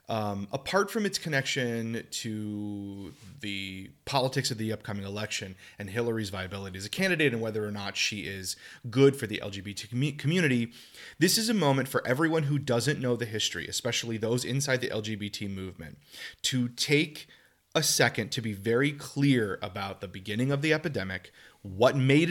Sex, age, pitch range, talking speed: male, 30-49, 100-130 Hz, 165 wpm